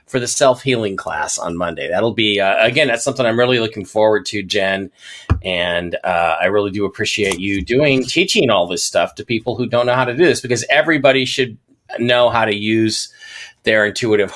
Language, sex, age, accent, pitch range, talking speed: English, male, 40-59, American, 110-160 Hz, 200 wpm